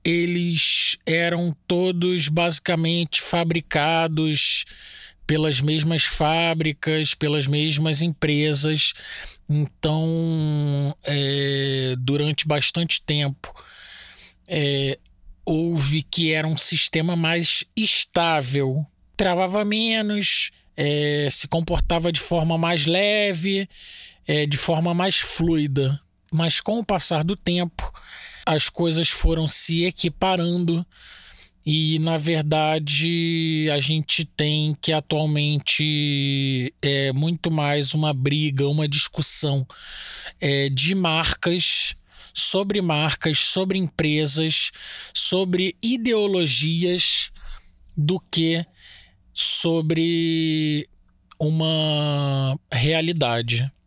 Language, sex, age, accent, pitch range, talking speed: Portuguese, male, 20-39, Brazilian, 150-170 Hz, 80 wpm